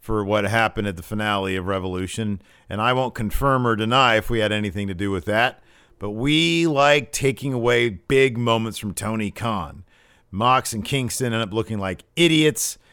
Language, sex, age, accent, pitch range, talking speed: English, male, 50-69, American, 100-150 Hz, 185 wpm